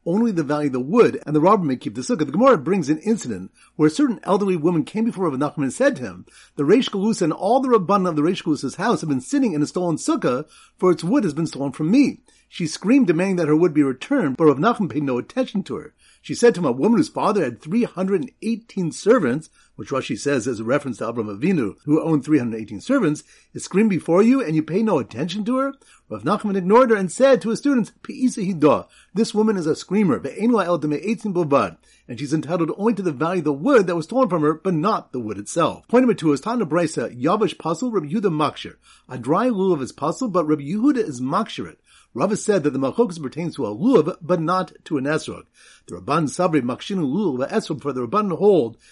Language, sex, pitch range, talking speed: English, male, 150-225 Hz, 220 wpm